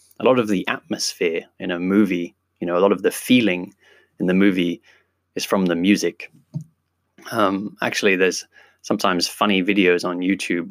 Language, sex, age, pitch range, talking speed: English, male, 20-39, 90-105 Hz, 170 wpm